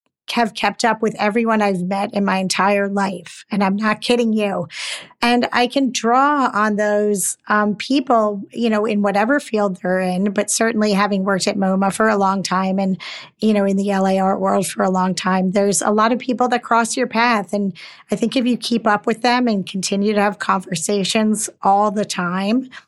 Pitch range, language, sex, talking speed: 200-230 Hz, English, female, 205 wpm